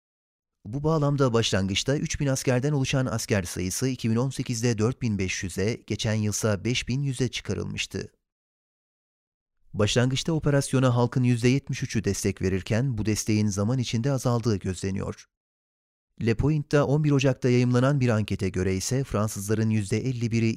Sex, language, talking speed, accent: male, Turkish, 110 wpm, native